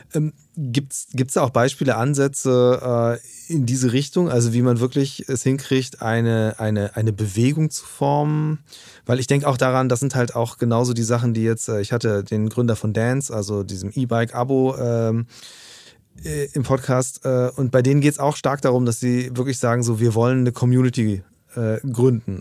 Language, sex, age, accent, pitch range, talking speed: German, male, 30-49, German, 115-135 Hz, 185 wpm